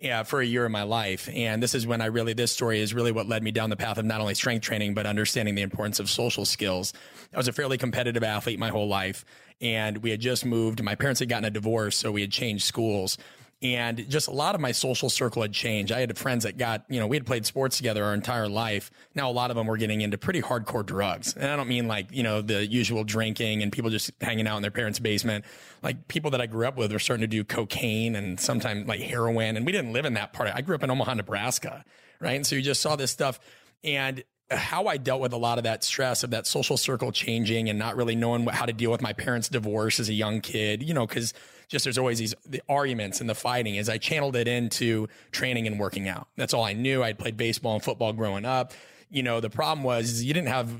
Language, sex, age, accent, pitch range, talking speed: English, male, 30-49, American, 110-125 Hz, 260 wpm